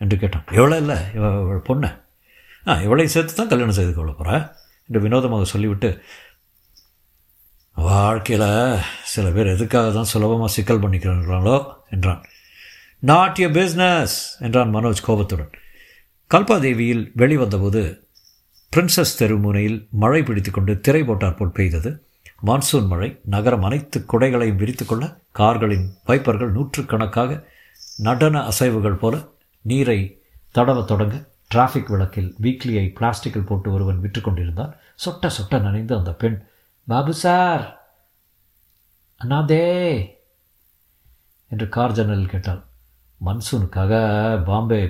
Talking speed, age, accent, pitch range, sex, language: 95 wpm, 60-79, native, 95-125 Hz, male, Tamil